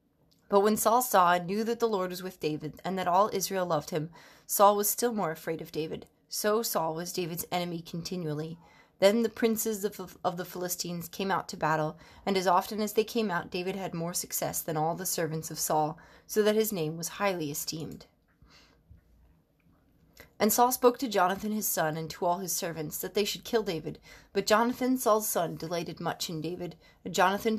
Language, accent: English, American